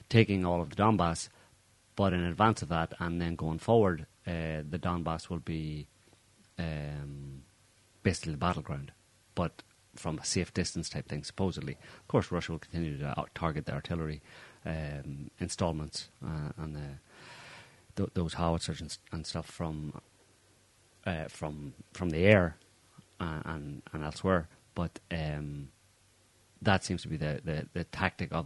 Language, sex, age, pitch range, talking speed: English, male, 30-49, 80-95 Hz, 150 wpm